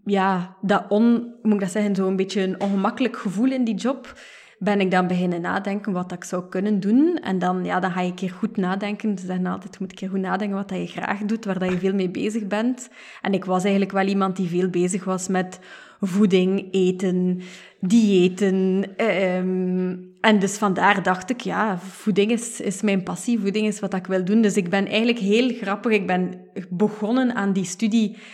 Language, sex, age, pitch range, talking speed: Dutch, female, 20-39, 185-215 Hz, 220 wpm